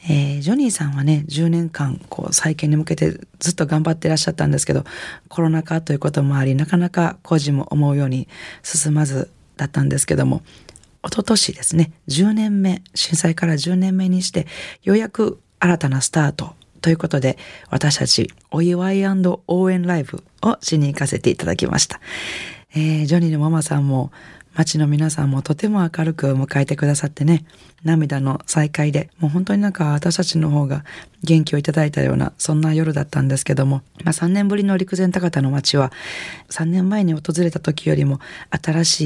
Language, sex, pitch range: Japanese, female, 145-175 Hz